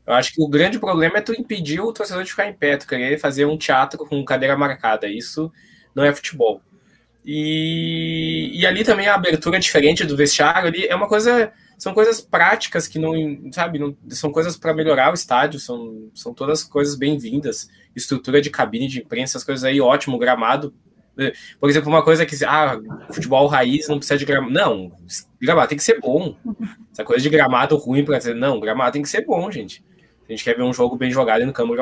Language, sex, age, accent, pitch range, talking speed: Portuguese, male, 20-39, Brazilian, 130-175 Hz, 210 wpm